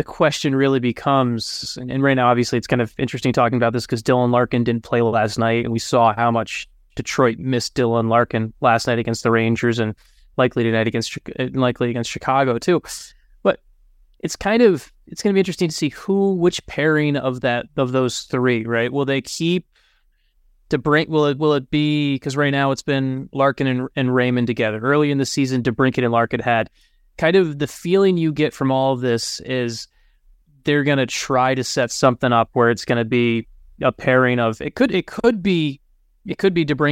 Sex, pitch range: male, 120-150 Hz